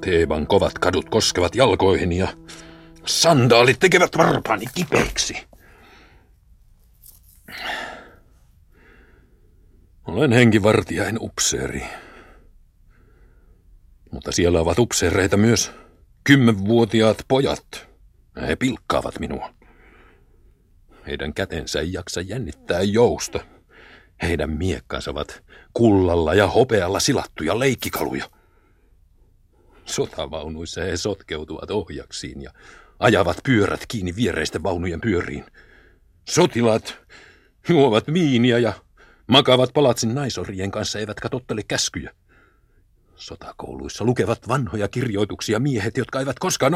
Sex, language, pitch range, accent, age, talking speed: male, Finnish, 85-120 Hz, native, 50-69, 85 wpm